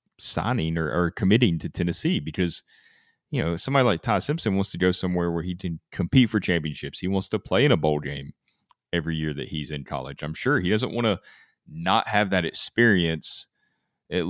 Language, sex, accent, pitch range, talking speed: English, male, American, 80-95 Hz, 200 wpm